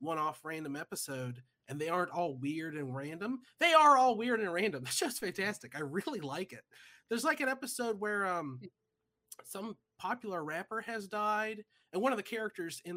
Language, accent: English, American